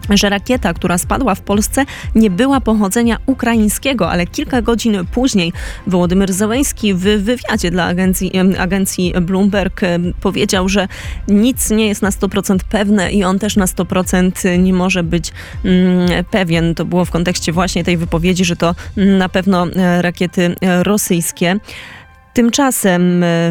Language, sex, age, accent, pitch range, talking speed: Polish, female, 20-39, native, 175-205 Hz, 135 wpm